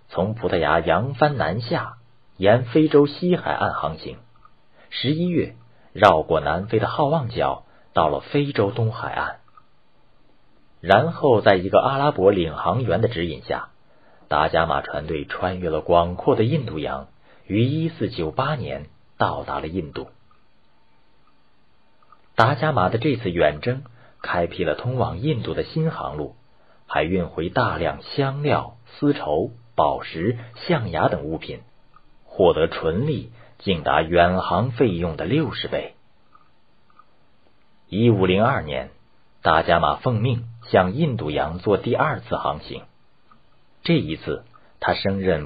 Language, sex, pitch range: Chinese, male, 90-130 Hz